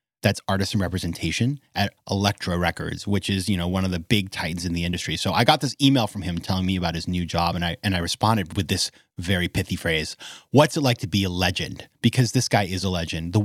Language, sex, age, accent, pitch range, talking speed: English, male, 30-49, American, 95-125 Hz, 250 wpm